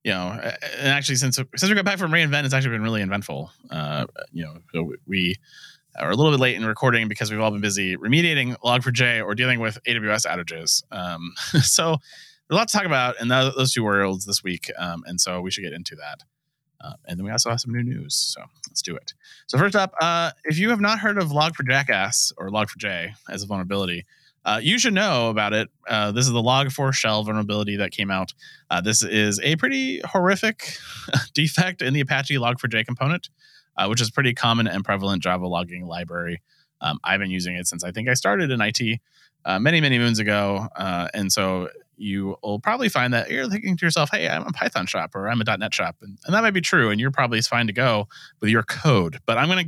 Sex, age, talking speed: male, 20-39, 225 wpm